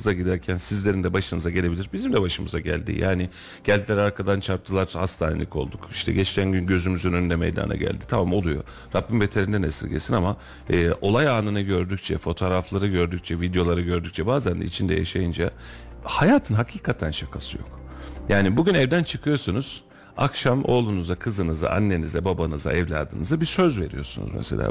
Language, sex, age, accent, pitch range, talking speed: Turkish, male, 40-59, native, 85-115 Hz, 140 wpm